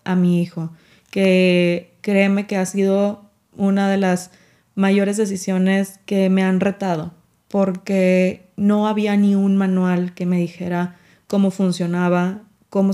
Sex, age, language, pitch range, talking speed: female, 20-39, Spanish, 180-200 Hz, 135 wpm